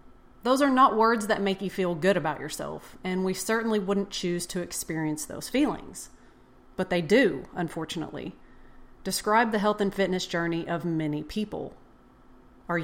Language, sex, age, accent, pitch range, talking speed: English, female, 30-49, American, 170-210 Hz, 160 wpm